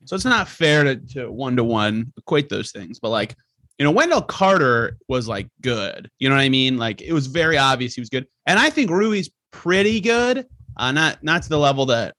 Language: English